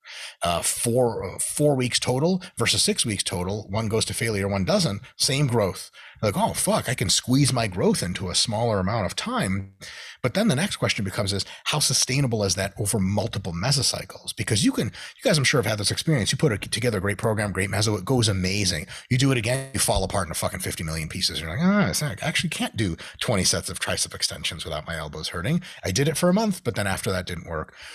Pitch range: 95-130 Hz